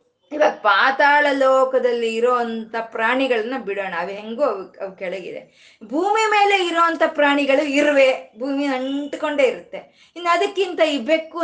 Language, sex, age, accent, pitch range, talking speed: Kannada, female, 20-39, native, 235-330 Hz, 110 wpm